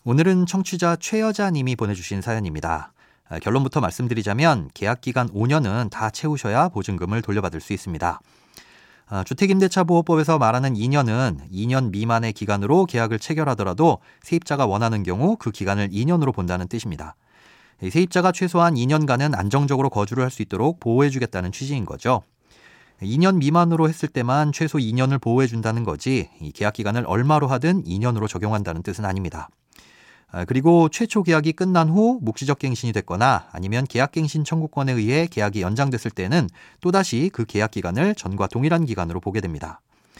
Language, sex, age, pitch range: Korean, male, 30-49, 105-155 Hz